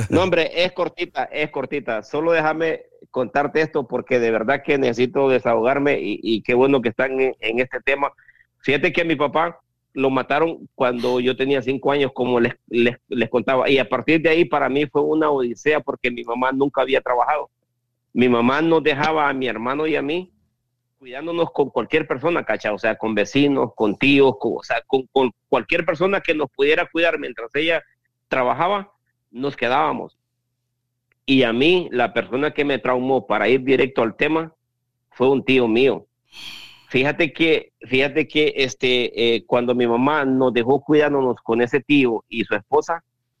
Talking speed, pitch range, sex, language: 180 wpm, 125-145 Hz, male, Spanish